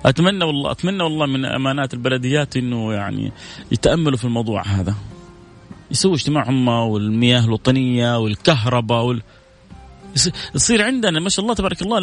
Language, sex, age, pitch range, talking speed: Arabic, male, 30-49, 125-170 Hz, 130 wpm